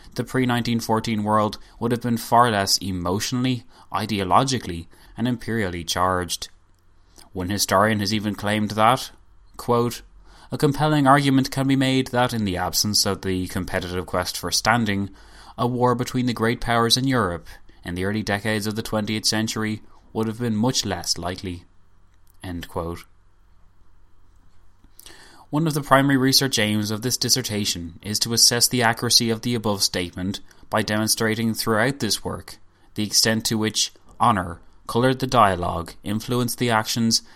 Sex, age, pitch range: male, 20-39, 90-115 Hz